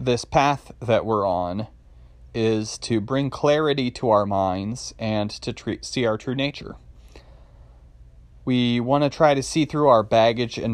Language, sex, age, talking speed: English, male, 30-49, 155 wpm